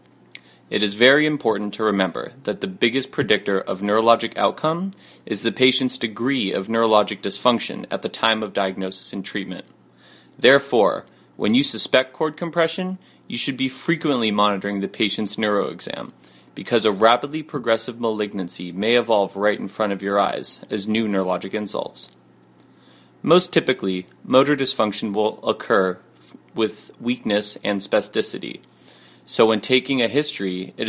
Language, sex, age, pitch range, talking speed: English, male, 30-49, 100-130 Hz, 145 wpm